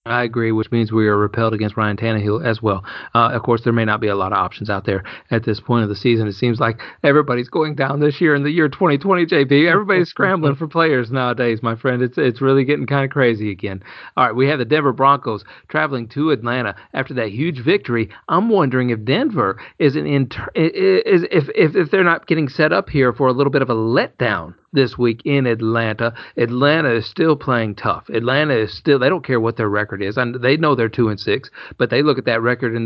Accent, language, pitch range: American, English, 115-140 Hz